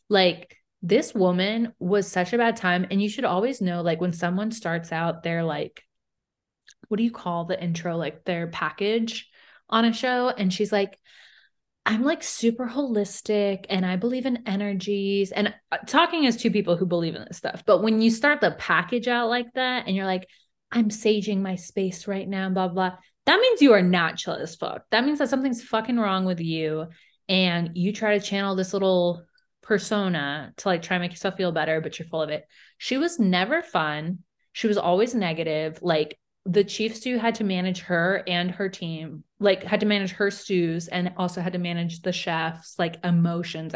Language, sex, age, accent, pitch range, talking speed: English, female, 20-39, American, 175-220 Hz, 200 wpm